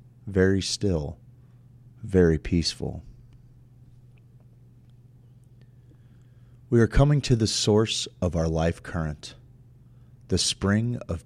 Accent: American